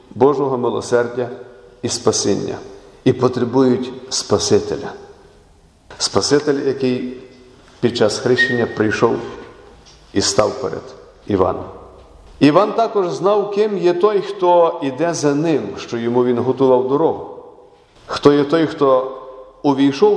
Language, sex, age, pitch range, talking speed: Ukrainian, male, 50-69, 125-200 Hz, 110 wpm